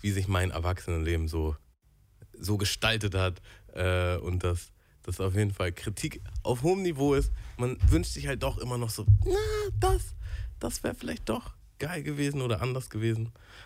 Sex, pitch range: male, 95-125 Hz